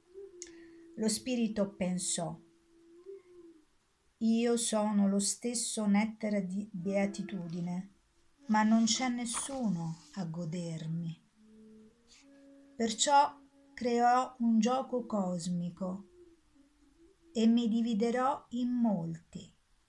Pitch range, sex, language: 195-290 Hz, female, Italian